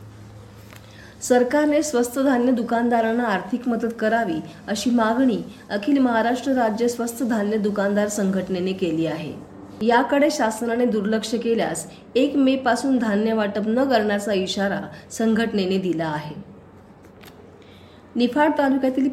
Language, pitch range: Marathi, 195-250 Hz